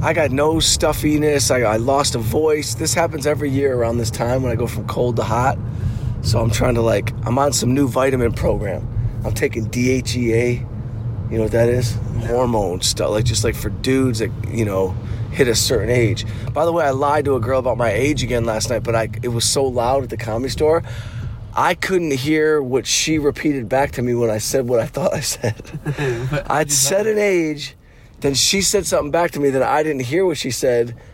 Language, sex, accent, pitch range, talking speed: English, male, American, 115-140 Hz, 220 wpm